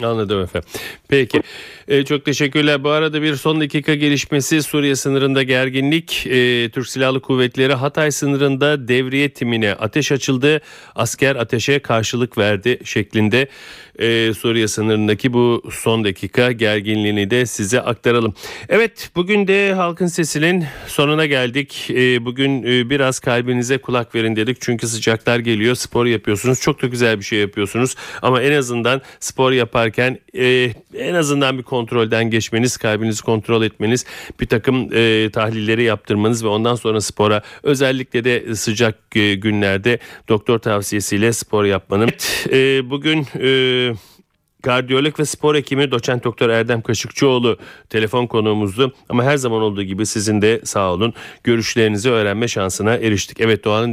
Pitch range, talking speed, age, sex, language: 110-135 Hz, 135 wpm, 40-59, male, Turkish